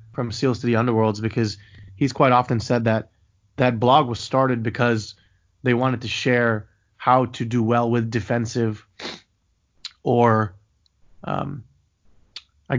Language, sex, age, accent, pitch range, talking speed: English, male, 20-39, American, 110-130 Hz, 135 wpm